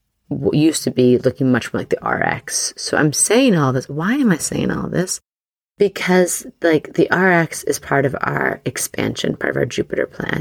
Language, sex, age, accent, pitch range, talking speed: English, female, 30-49, American, 130-170 Hz, 200 wpm